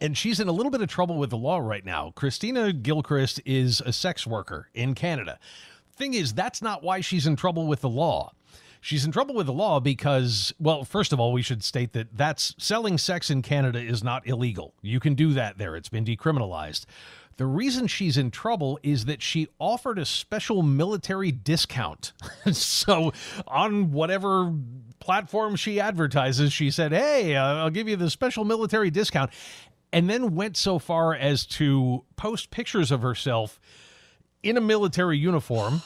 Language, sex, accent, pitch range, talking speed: English, male, American, 130-180 Hz, 175 wpm